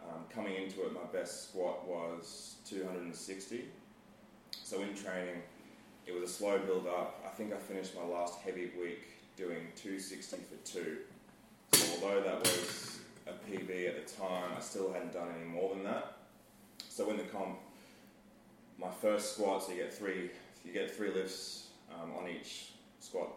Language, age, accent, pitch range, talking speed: English, 20-39, Australian, 85-100 Hz, 160 wpm